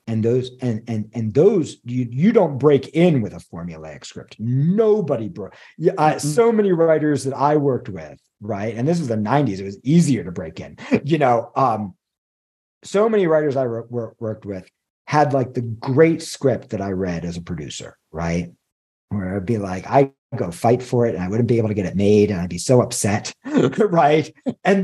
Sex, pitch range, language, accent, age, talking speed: male, 115-160 Hz, English, American, 50-69, 205 wpm